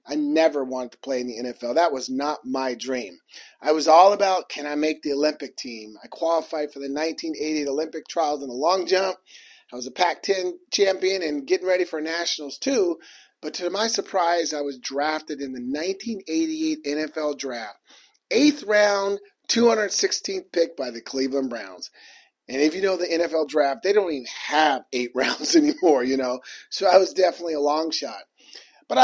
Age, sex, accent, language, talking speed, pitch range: 40-59, male, American, English, 185 wpm, 145-195 Hz